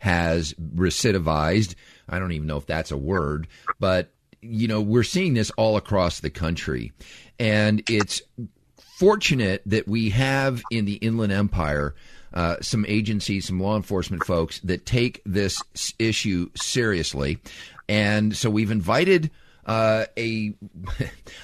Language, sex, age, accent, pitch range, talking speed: English, male, 50-69, American, 90-115 Hz, 130 wpm